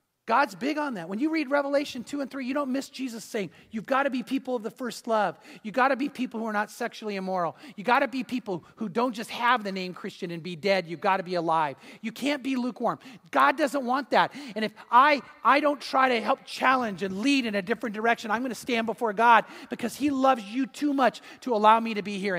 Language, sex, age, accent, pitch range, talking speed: English, male, 40-59, American, 200-260 Hz, 255 wpm